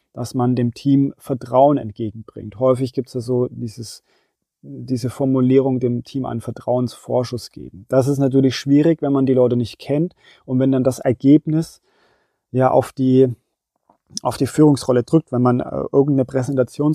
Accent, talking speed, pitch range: German, 165 wpm, 125-145 Hz